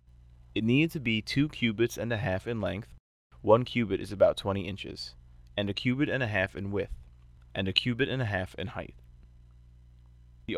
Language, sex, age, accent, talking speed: English, male, 20-39, American, 195 wpm